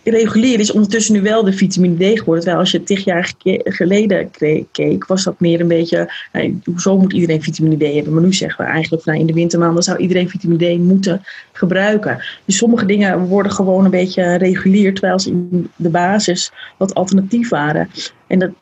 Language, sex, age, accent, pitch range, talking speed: Dutch, female, 30-49, Dutch, 170-200 Hz, 195 wpm